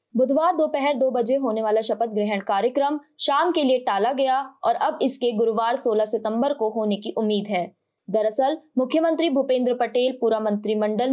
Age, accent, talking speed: 20-39, native, 175 wpm